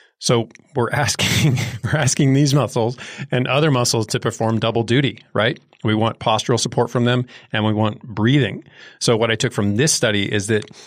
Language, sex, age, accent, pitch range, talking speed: English, male, 40-59, American, 105-125 Hz, 190 wpm